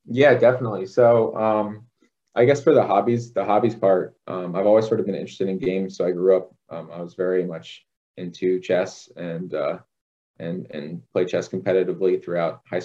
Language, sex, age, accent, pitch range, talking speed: English, male, 20-39, American, 85-95 Hz, 190 wpm